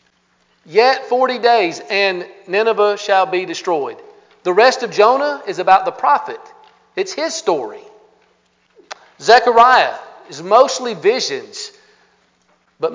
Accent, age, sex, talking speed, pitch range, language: American, 50-69, male, 110 wpm, 175-240 Hz, English